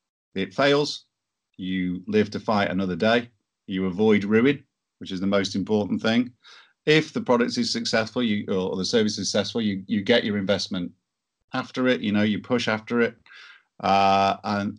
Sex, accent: male, British